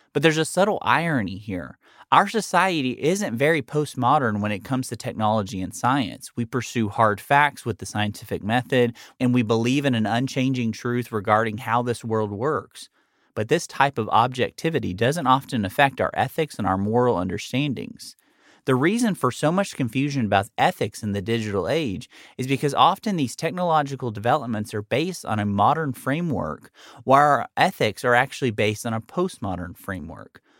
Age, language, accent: 30-49, English, American